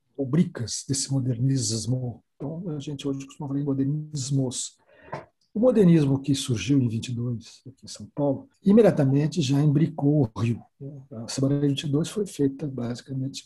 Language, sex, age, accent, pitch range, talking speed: Portuguese, male, 60-79, Brazilian, 125-155 Hz, 145 wpm